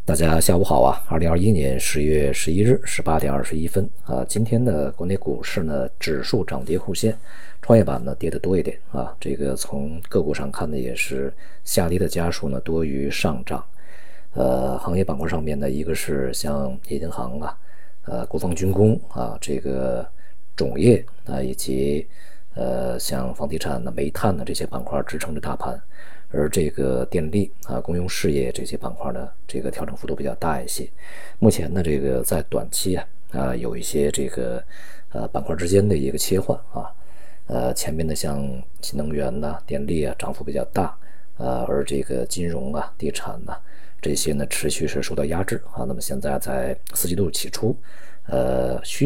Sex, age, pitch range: male, 50-69, 70-90 Hz